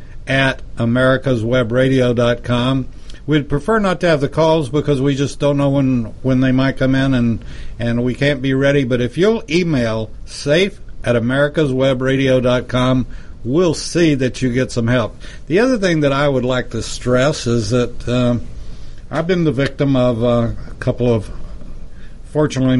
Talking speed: 165 wpm